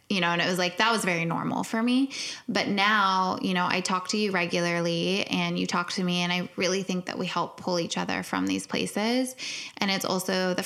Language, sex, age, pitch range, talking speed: English, female, 20-39, 175-200 Hz, 240 wpm